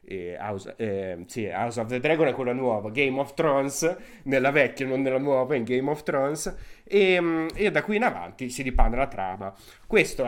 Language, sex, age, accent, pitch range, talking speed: Italian, male, 30-49, native, 110-150 Hz, 200 wpm